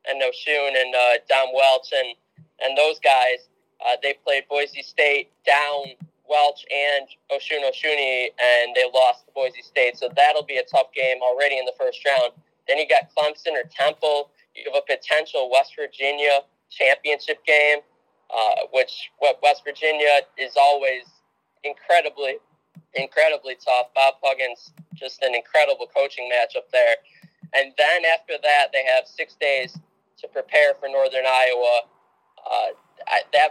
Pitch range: 130-160 Hz